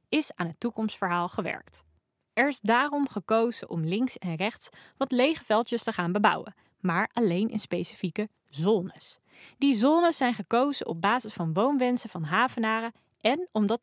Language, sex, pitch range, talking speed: Dutch, female, 180-255 Hz, 155 wpm